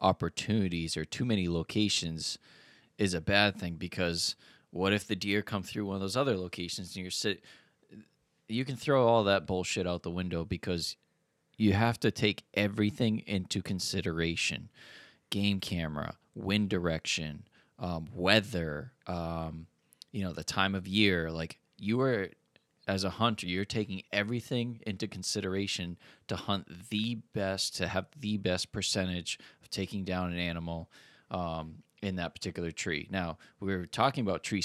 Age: 20-39